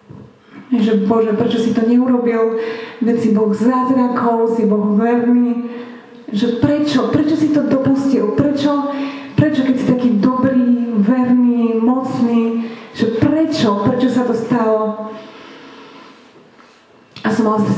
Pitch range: 210-240 Hz